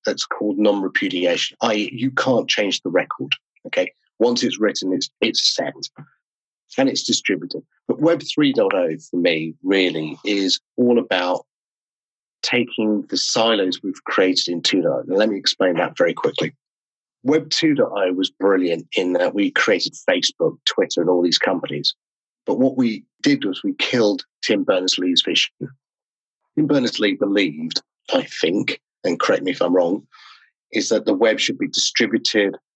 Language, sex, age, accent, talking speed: English, male, 30-49, British, 155 wpm